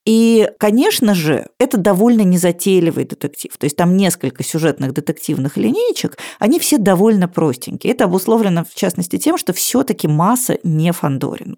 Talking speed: 145 wpm